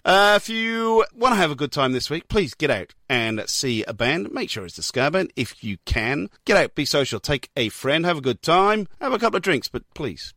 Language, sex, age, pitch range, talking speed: English, male, 40-59, 115-165 Hz, 260 wpm